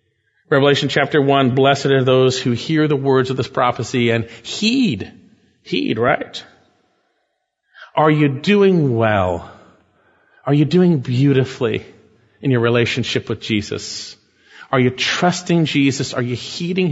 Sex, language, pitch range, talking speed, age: male, English, 115-145 Hz, 130 wpm, 40-59